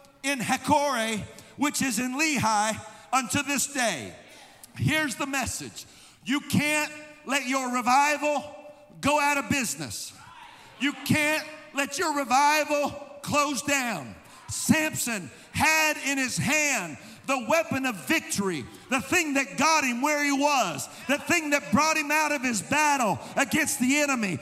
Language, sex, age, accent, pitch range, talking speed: English, male, 50-69, American, 275-325 Hz, 140 wpm